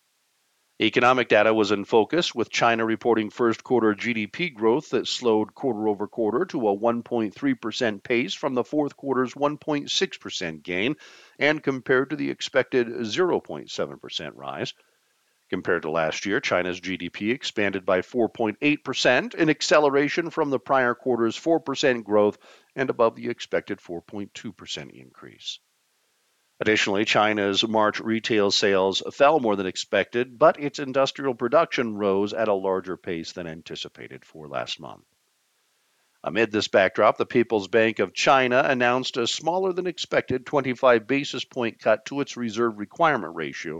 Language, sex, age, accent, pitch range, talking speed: English, male, 50-69, American, 100-130 Hz, 130 wpm